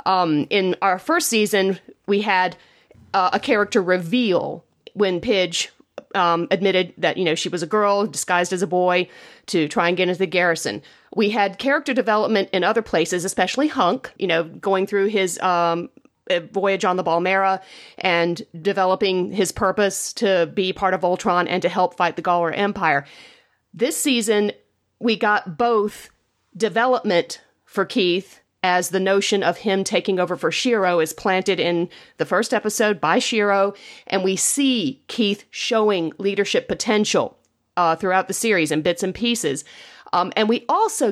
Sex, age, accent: female, 40-59, American